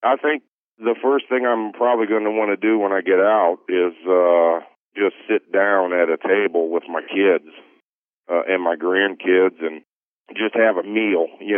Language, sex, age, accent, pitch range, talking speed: English, male, 40-59, American, 85-100 Hz, 190 wpm